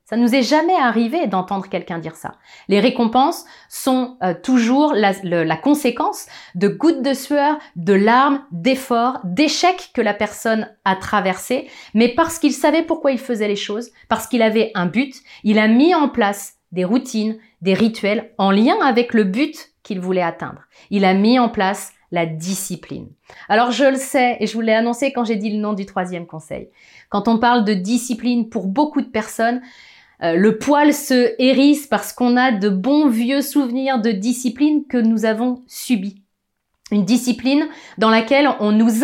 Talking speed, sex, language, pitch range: 185 wpm, female, French, 205-270 Hz